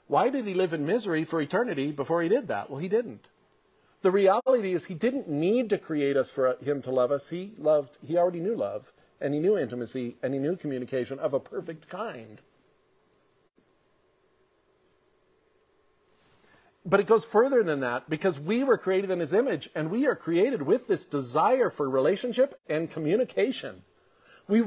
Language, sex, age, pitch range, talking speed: English, male, 50-69, 155-225 Hz, 175 wpm